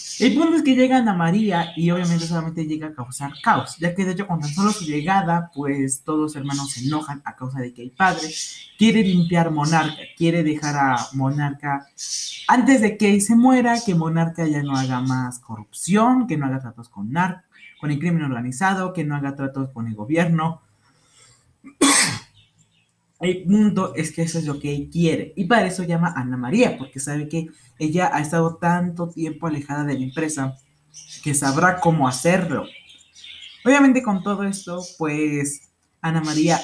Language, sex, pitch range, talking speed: Spanish, male, 140-185 Hz, 180 wpm